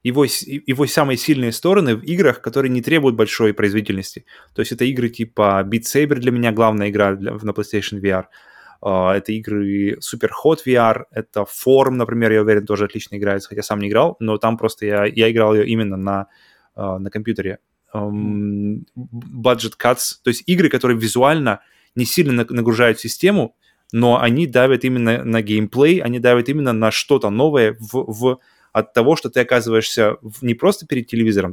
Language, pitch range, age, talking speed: Russian, 110-130 Hz, 20-39, 175 wpm